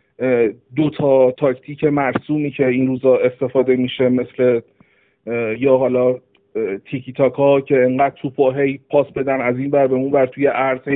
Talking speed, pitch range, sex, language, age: 140 wpm, 130-160 Hz, male, Persian, 50-69